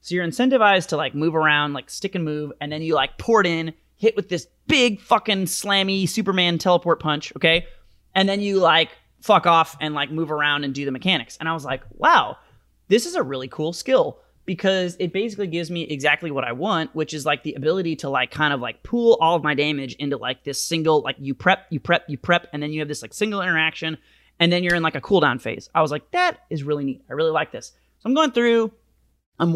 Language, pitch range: English, 140-185 Hz